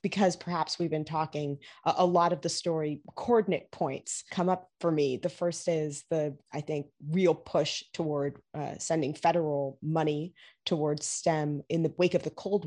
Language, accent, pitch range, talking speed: English, American, 145-170 Hz, 175 wpm